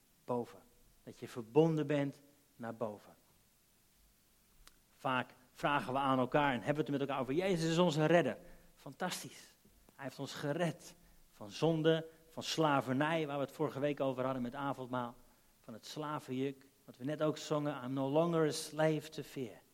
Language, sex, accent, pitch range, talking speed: Dutch, male, Dutch, 130-155 Hz, 170 wpm